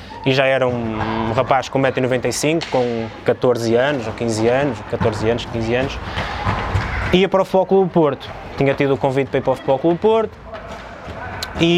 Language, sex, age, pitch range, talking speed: Portuguese, male, 20-39, 125-170 Hz, 180 wpm